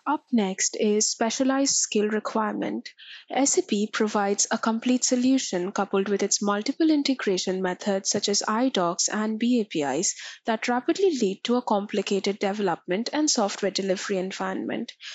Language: English